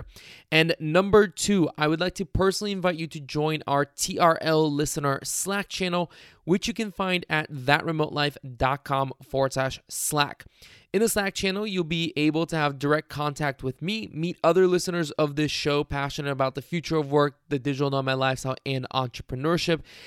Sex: male